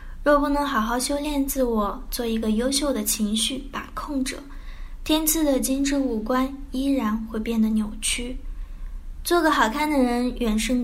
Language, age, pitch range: Chinese, 10-29, 220-280 Hz